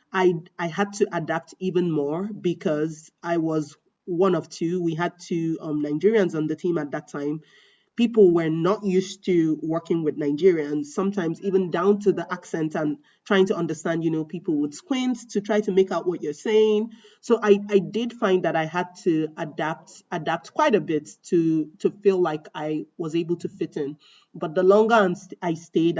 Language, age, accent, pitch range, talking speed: English, 30-49, Nigerian, 155-195 Hz, 195 wpm